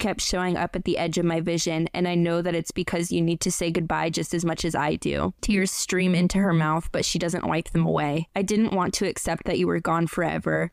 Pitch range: 165-180 Hz